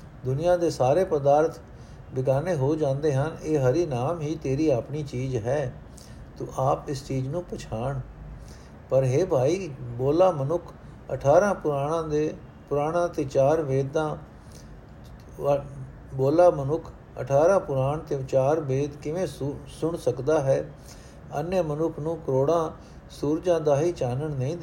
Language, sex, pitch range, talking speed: Punjabi, male, 130-160 Hz, 130 wpm